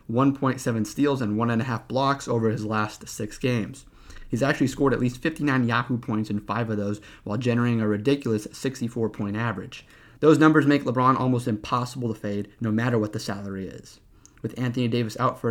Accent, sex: American, male